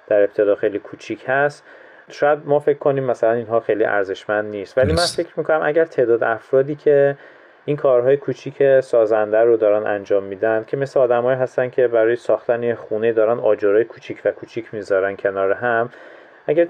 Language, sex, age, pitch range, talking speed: Persian, male, 30-49, 110-160 Hz, 175 wpm